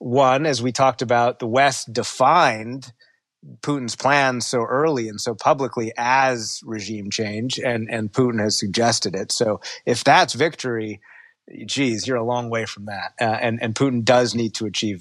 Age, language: 30-49, English